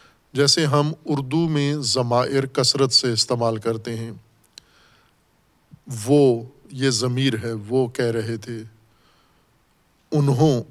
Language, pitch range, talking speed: Urdu, 120-145 Hz, 105 wpm